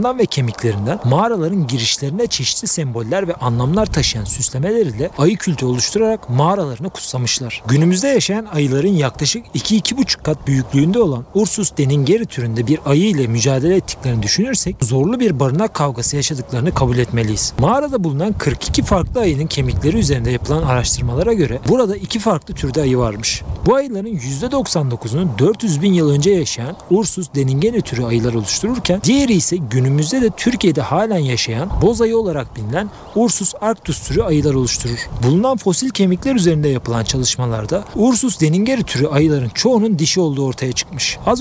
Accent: native